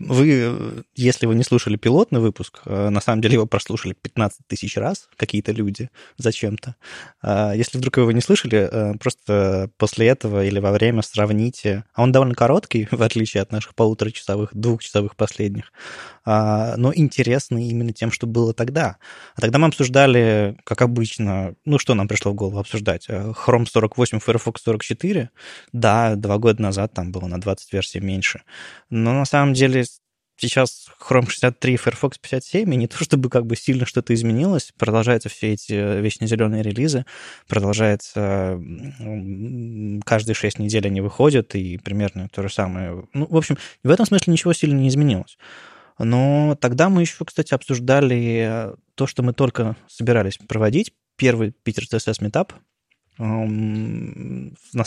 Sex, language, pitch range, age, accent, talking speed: male, Russian, 105-130 Hz, 20-39, native, 150 wpm